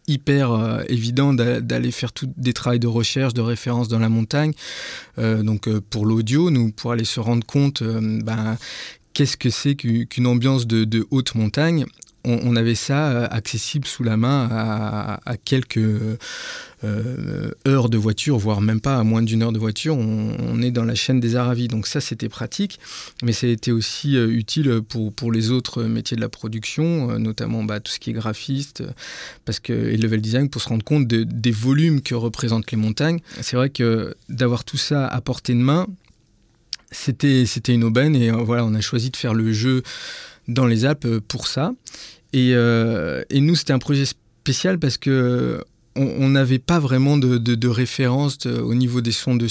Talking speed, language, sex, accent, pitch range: 195 wpm, French, male, French, 115-135 Hz